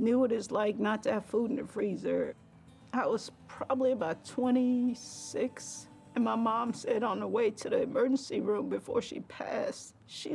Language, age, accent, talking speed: English, 50-69, American, 180 wpm